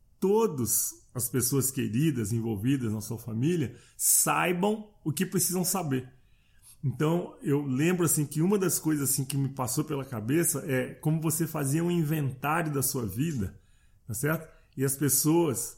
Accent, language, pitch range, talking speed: Brazilian, Portuguese, 115-150 Hz, 155 wpm